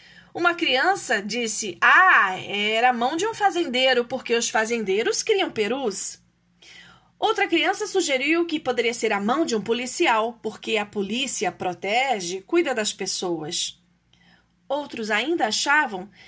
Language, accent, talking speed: Portuguese, Brazilian, 135 wpm